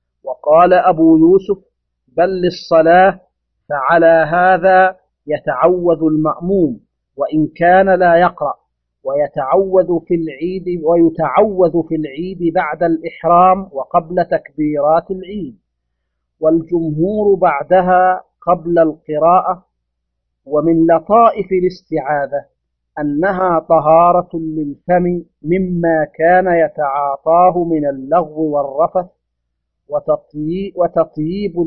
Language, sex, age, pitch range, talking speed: Arabic, male, 50-69, 150-180 Hz, 80 wpm